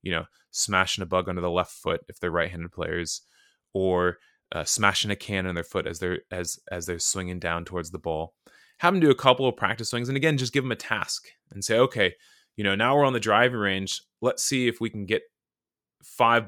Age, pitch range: 20-39, 95-125 Hz